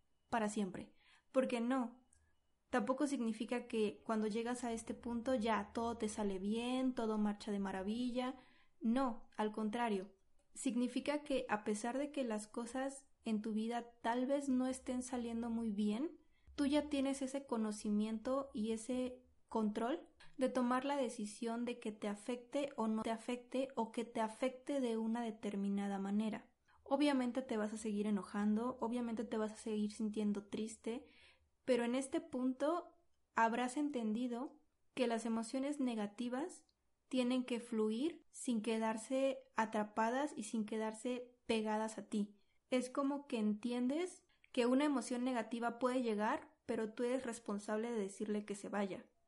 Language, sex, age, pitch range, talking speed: Spanish, female, 20-39, 220-260 Hz, 150 wpm